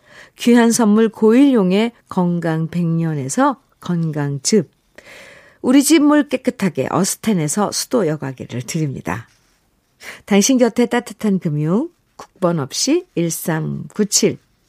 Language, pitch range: Korean, 165-255 Hz